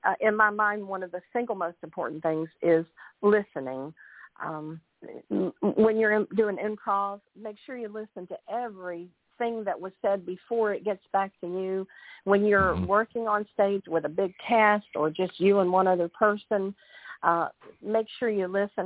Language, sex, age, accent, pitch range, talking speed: English, female, 50-69, American, 180-230 Hz, 180 wpm